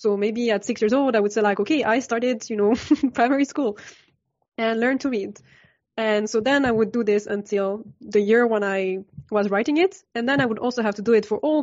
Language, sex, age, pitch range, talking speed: English, female, 20-39, 205-245 Hz, 245 wpm